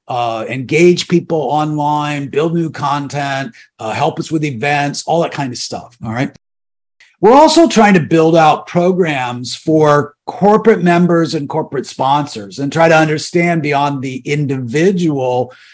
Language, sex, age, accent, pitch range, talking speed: English, male, 50-69, American, 130-170 Hz, 150 wpm